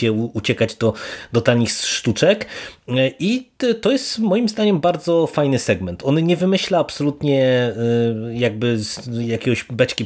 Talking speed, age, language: 125 wpm, 20-39, Polish